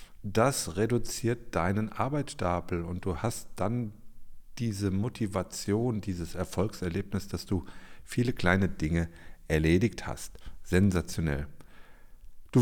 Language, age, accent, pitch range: German, 50-69, German, 85-110 Hz